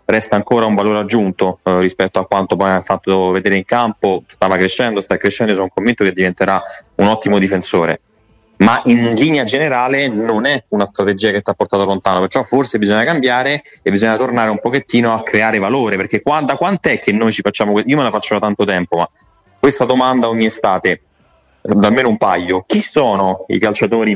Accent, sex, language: native, male, Italian